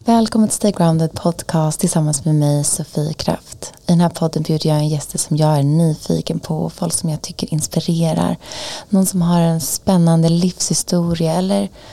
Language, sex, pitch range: Swedish, female, 150-180 Hz